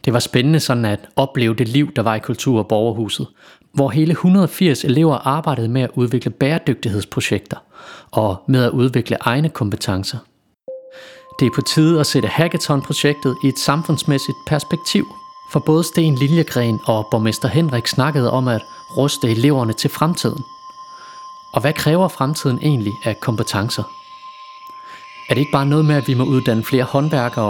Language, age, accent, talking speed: Danish, 30-49, native, 160 wpm